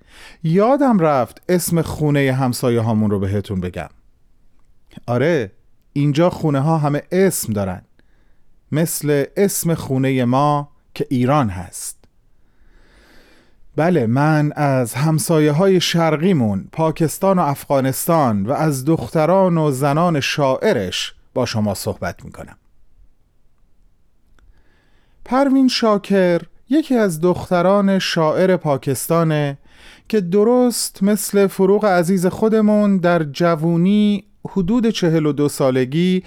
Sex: male